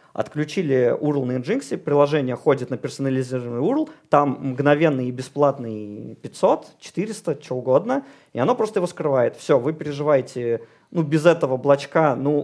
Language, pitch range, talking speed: Russian, 125-155 Hz, 145 wpm